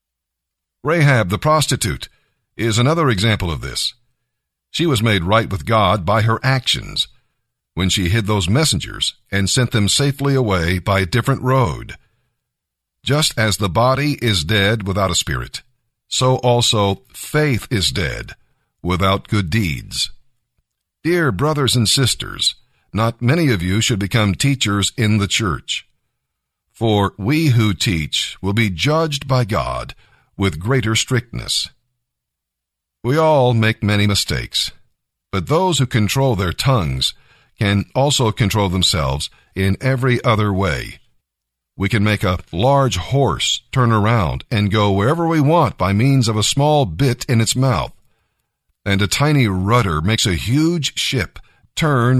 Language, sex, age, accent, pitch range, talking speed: English, male, 50-69, American, 100-130 Hz, 145 wpm